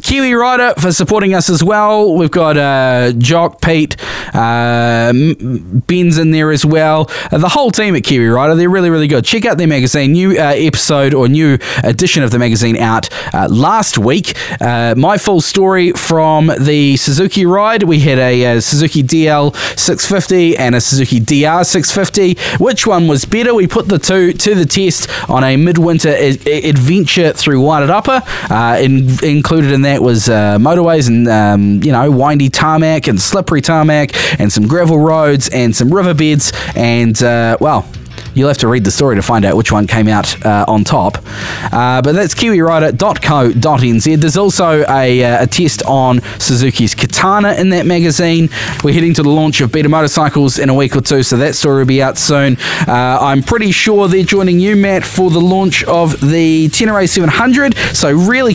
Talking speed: 185 wpm